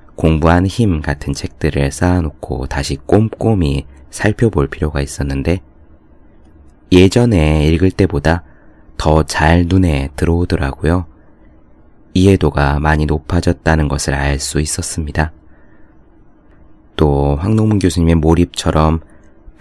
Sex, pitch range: male, 75-90 Hz